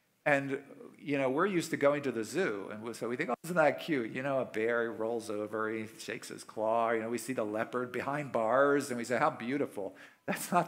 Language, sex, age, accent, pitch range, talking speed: English, male, 50-69, American, 115-150 Hz, 245 wpm